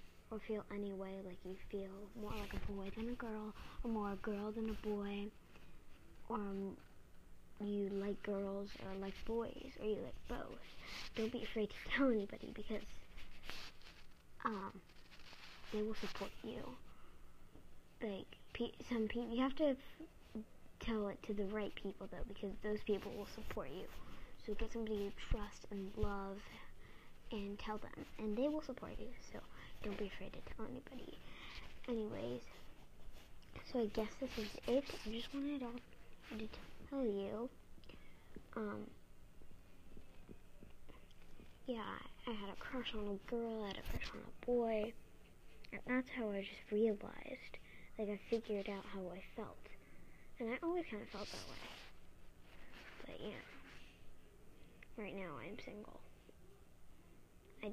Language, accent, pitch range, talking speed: English, American, 195-230 Hz, 150 wpm